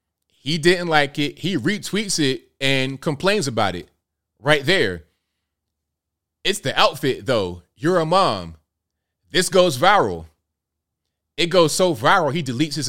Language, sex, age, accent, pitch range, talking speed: English, male, 30-49, American, 95-150 Hz, 140 wpm